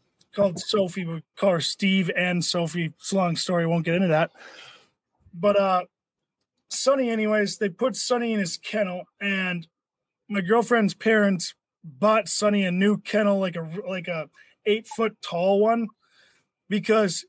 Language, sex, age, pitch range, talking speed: English, male, 20-39, 175-210 Hz, 155 wpm